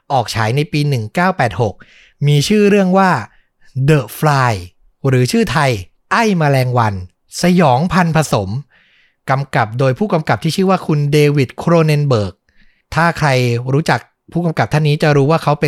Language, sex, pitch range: Thai, male, 130-165 Hz